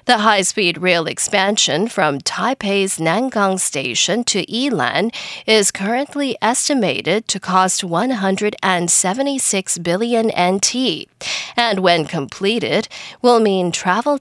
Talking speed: 100 wpm